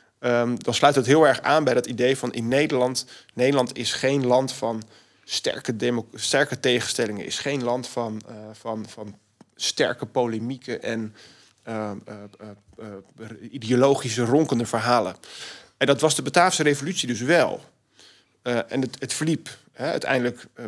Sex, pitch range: male, 110-130 Hz